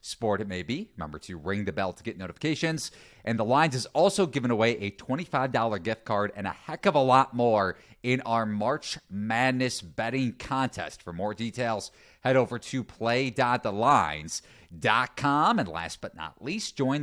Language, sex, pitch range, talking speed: English, male, 115-155 Hz, 175 wpm